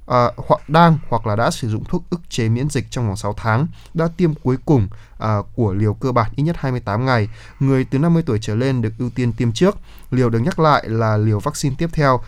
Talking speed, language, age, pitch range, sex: 245 wpm, Vietnamese, 20-39, 110-135 Hz, male